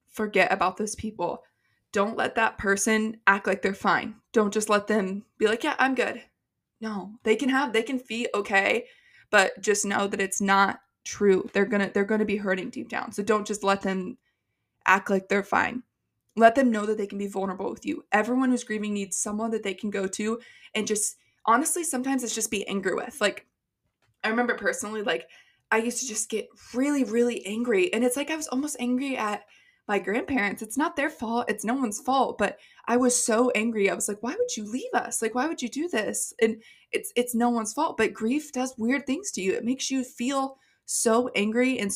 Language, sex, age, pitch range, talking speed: English, female, 20-39, 200-245 Hz, 220 wpm